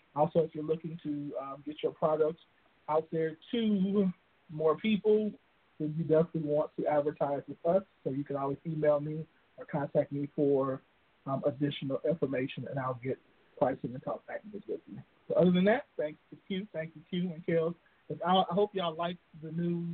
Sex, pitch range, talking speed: male, 145-170 Hz, 185 wpm